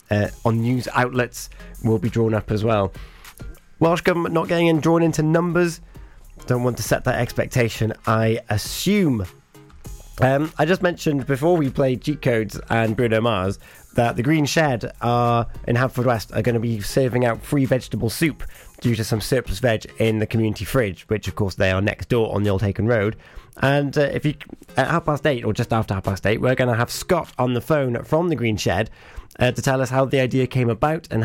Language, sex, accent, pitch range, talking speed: English, male, British, 110-135 Hz, 215 wpm